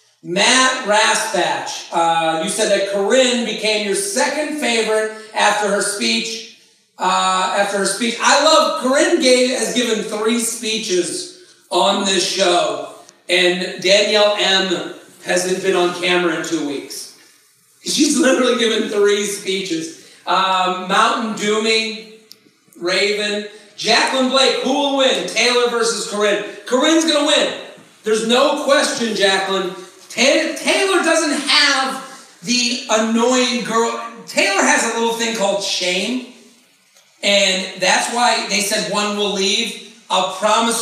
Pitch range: 195-245 Hz